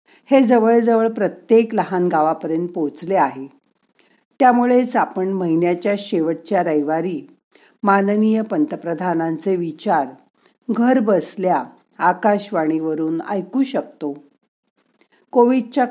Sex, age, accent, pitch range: female, 50-69, native, 165-225 Hz